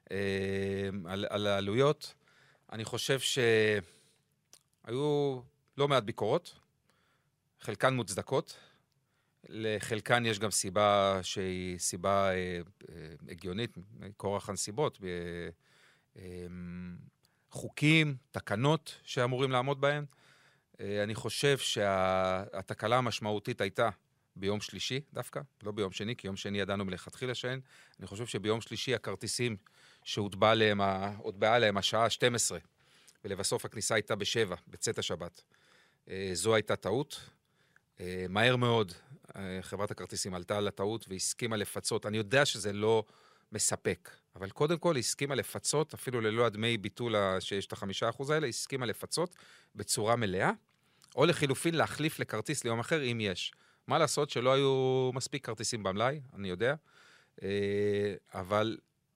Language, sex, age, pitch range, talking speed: Hebrew, male, 40-59, 100-130 Hz, 120 wpm